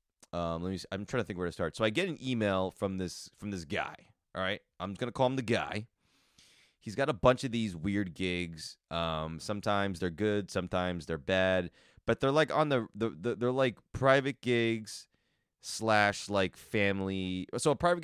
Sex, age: male, 30-49